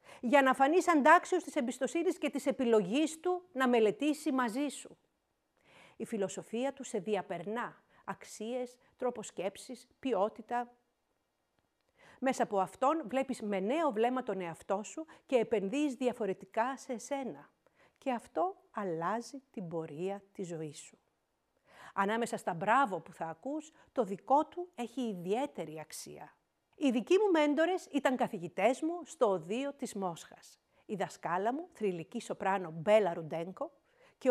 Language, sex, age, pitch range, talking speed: Greek, female, 50-69, 205-295 Hz, 135 wpm